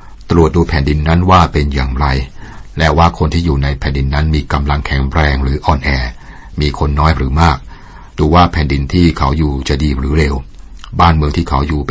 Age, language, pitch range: 60-79, Thai, 70-85 Hz